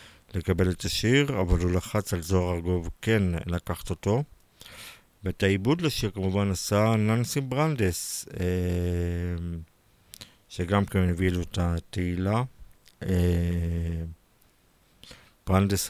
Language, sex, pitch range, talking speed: Hebrew, male, 90-105 Hz, 105 wpm